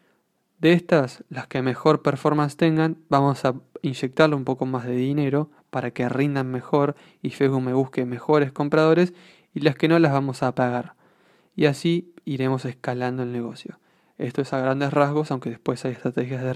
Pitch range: 130-145 Hz